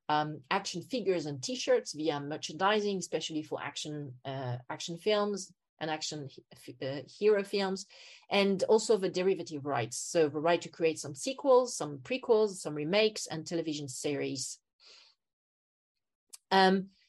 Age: 40-59